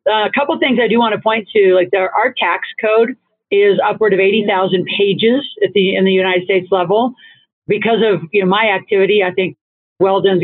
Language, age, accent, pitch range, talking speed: English, 50-69, American, 180-205 Hz, 215 wpm